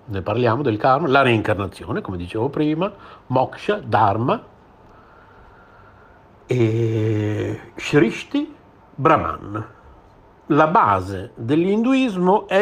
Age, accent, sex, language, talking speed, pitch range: 60-79, native, male, Italian, 80 wpm, 105-130 Hz